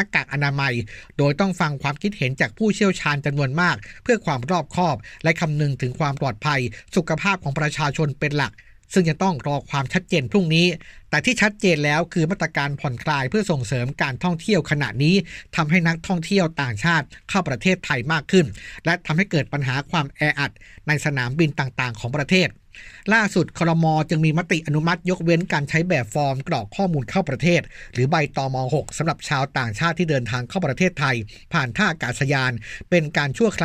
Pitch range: 140-180 Hz